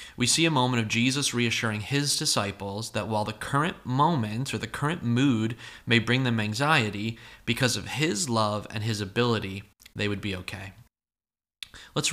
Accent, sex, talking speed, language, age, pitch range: American, male, 170 wpm, English, 30-49, 105-130 Hz